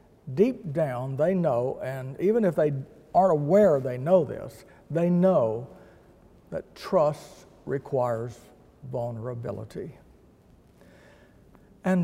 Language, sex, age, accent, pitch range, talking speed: English, male, 60-79, American, 130-165 Hz, 100 wpm